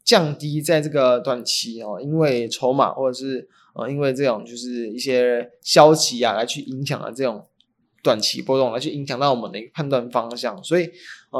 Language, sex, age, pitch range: Chinese, male, 20-39, 130-165 Hz